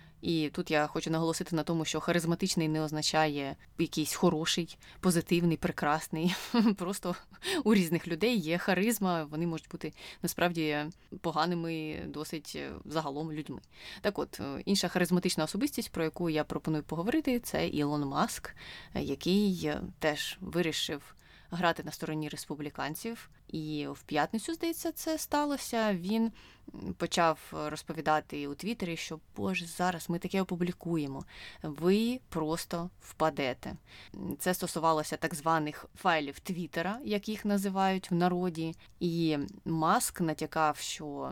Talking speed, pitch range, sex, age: 120 wpm, 155-185 Hz, female, 20-39